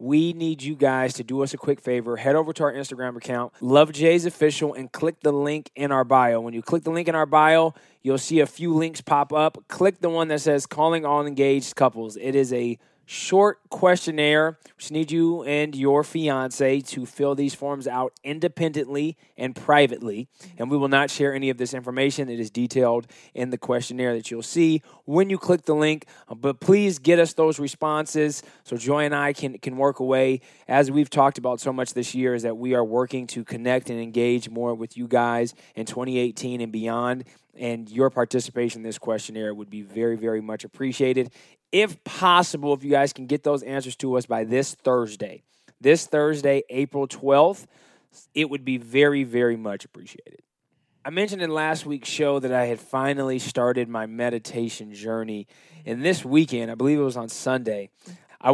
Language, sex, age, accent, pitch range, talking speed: English, male, 20-39, American, 125-150 Hz, 195 wpm